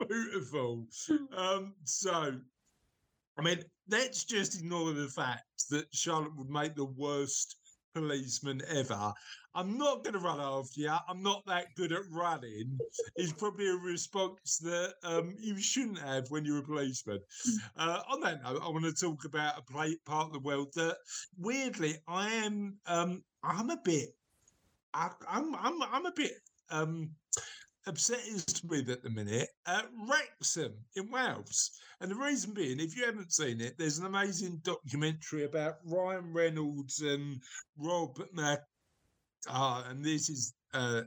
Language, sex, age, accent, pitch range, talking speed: English, male, 50-69, British, 140-185 Hz, 150 wpm